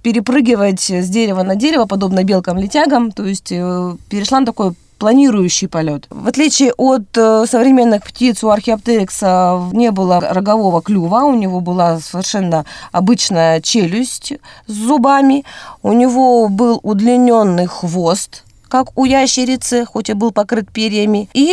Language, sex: Russian, female